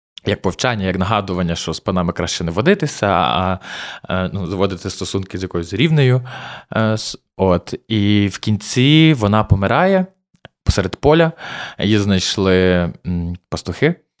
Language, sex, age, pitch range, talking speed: Ukrainian, male, 20-39, 95-135 Hz, 120 wpm